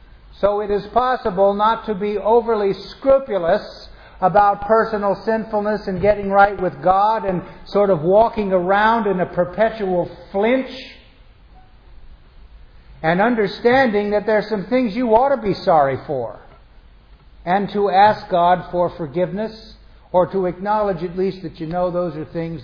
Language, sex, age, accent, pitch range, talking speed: English, male, 50-69, American, 150-205 Hz, 150 wpm